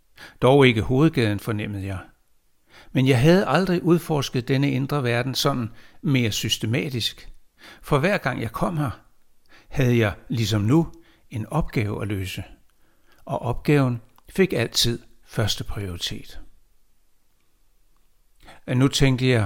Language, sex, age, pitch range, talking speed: Danish, male, 60-79, 110-145 Hz, 125 wpm